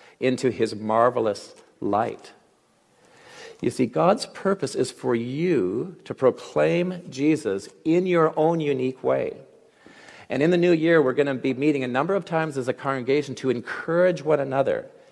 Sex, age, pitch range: male, 50-69, 125-165 Hz